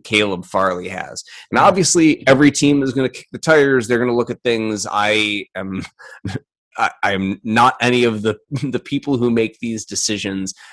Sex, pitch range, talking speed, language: male, 95-120 Hz, 185 wpm, English